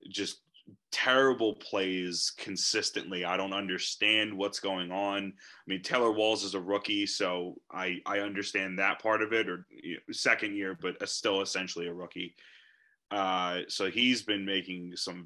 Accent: American